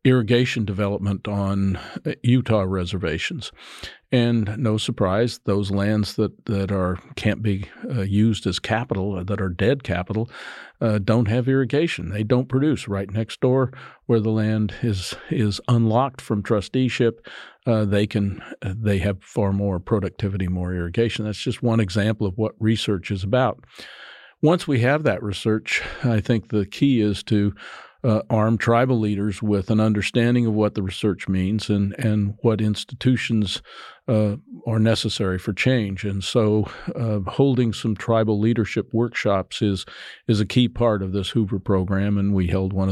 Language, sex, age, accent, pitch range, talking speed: English, male, 50-69, American, 100-120 Hz, 160 wpm